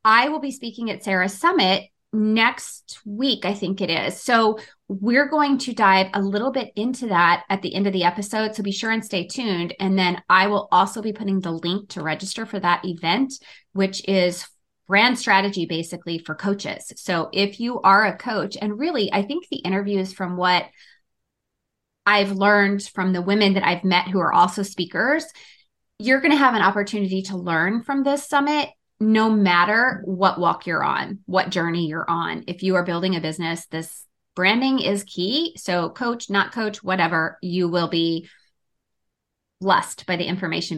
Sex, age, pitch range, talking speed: female, 20-39, 180-230 Hz, 185 wpm